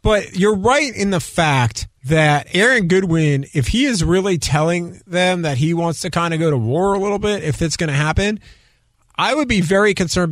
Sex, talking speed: male, 215 wpm